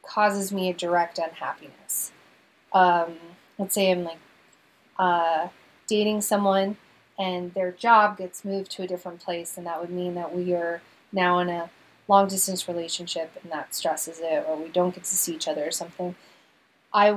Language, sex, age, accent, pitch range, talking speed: English, female, 20-39, American, 175-205 Hz, 175 wpm